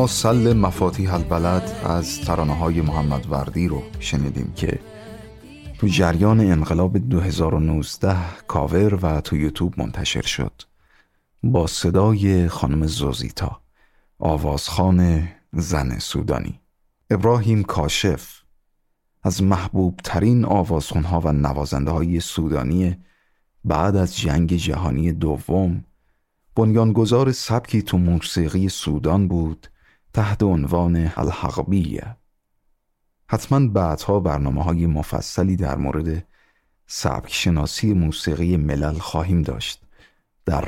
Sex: male